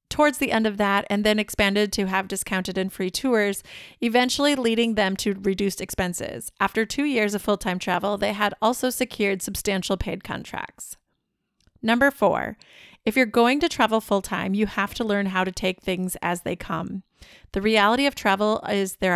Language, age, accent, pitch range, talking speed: English, 30-49, American, 195-230 Hz, 180 wpm